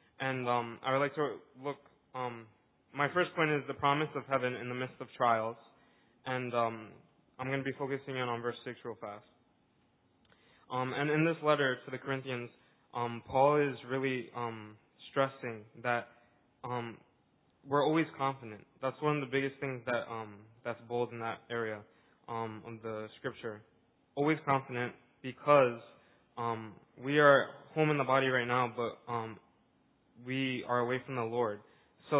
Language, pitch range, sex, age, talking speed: English, 120-140 Hz, male, 20-39, 170 wpm